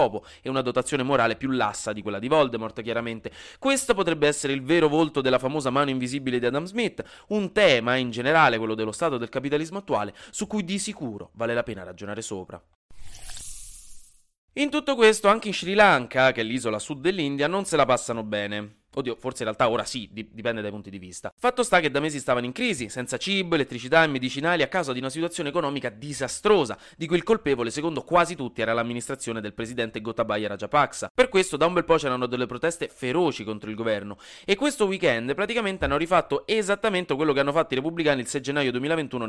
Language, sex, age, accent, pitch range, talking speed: Italian, male, 30-49, native, 115-170 Hz, 205 wpm